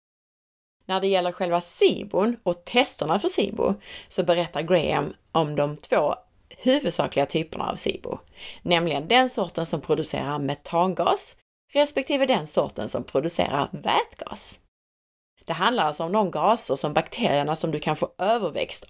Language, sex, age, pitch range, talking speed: Swedish, female, 30-49, 150-205 Hz, 140 wpm